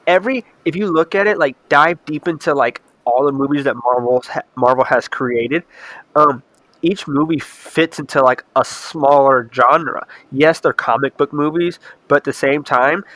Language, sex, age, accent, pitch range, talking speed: English, male, 20-39, American, 130-160 Hz, 180 wpm